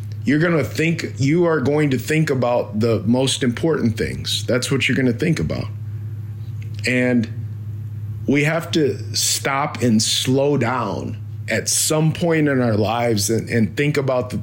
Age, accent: 40-59, American